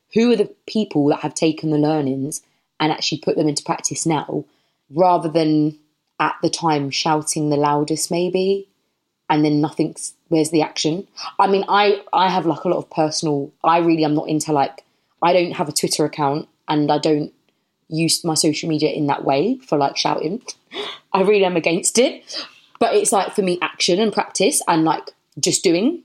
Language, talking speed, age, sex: English, 190 wpm, 20-39, female